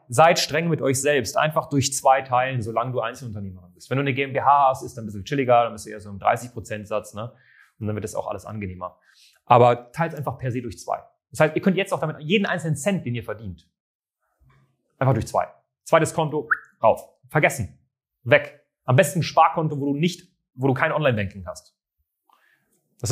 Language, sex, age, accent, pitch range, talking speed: German, male, 30-49, German, 120-170 Hz, 210 wpm